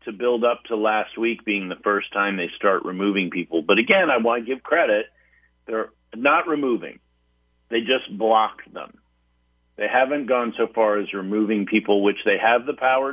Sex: male